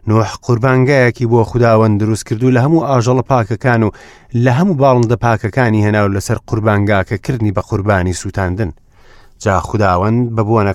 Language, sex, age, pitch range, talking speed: English, male, 30-49, 100-120 Hz, 145 wpm